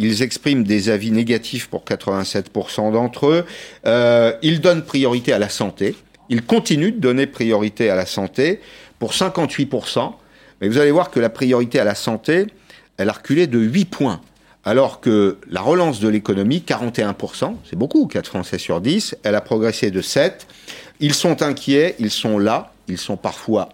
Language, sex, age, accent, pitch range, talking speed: French, male, 50-69, French, 105-145 Hz, 175 wpm